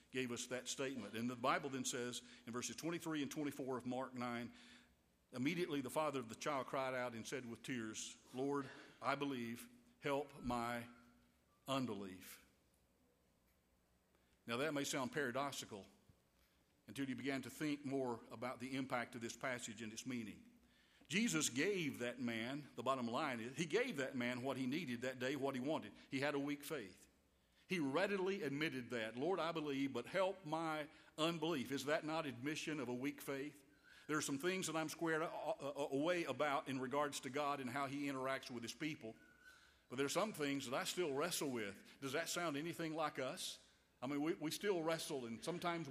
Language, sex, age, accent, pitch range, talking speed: English, male, 50-69, American, 120-155 Hz, 185 wpm